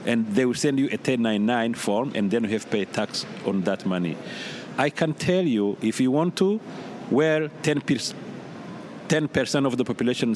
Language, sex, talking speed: English, male, 185 wpm